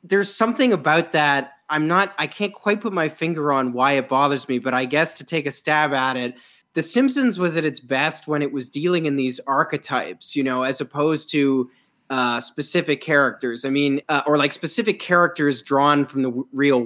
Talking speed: 210 wpm